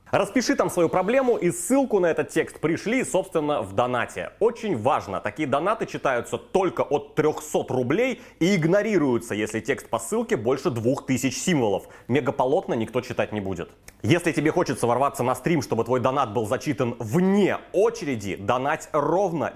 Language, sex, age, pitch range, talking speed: Bulgarian, male, 20-39, 130-205 Hz, 155 wpm